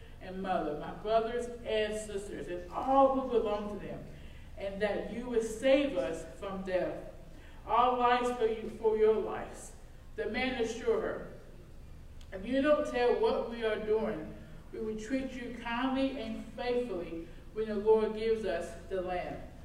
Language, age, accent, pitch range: English, 50-69, American, 195-260 Hz